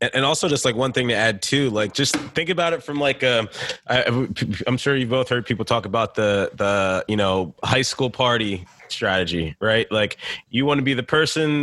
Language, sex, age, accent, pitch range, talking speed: English, male, 20-39, American, 110-140 Hz, 210 wpm